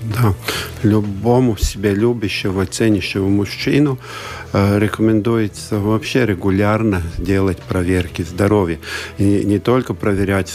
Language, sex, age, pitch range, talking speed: Russian, male, 50-69, 90-110 Hz, 95 wpm